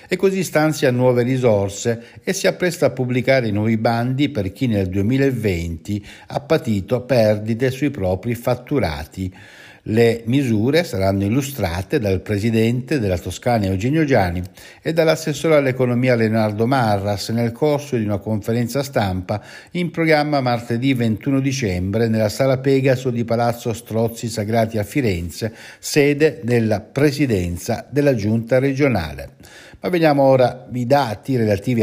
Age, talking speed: 60-79, 130 wpm